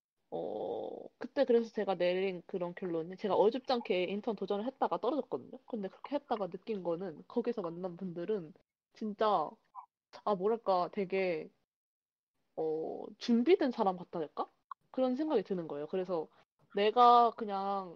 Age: 20-39